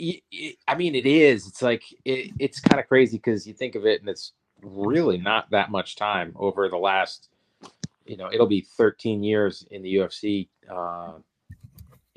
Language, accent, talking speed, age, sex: English, American, 175 wpm, 30-49, male